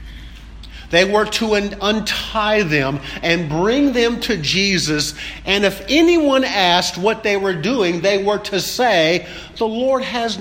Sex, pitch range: male, 120-200 Hz